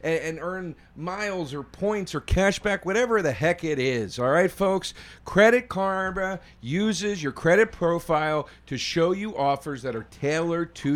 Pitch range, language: 140-220 Hz, English